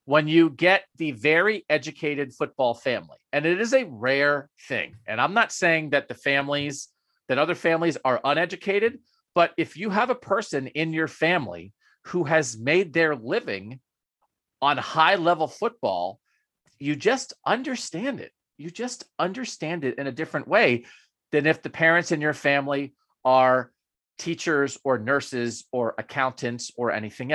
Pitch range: 125-165 Hz